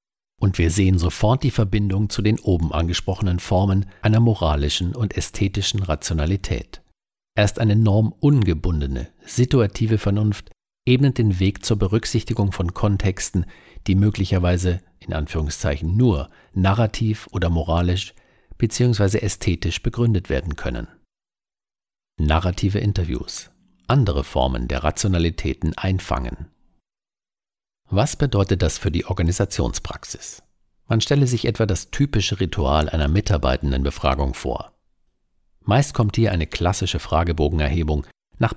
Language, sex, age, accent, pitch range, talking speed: German, male, 50-69, German, 80-105 Hz, 115 wpm